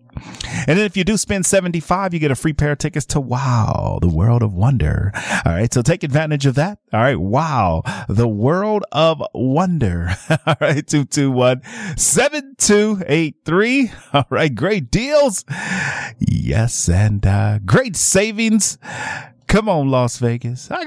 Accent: American